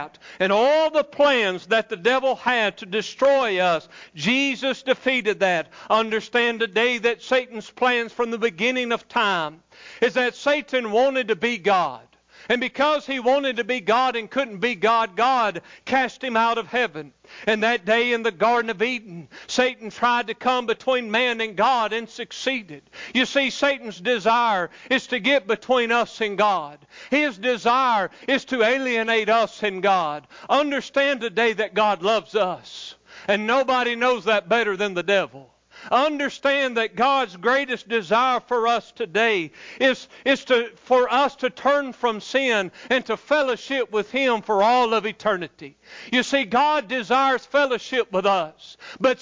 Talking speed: 160 wpm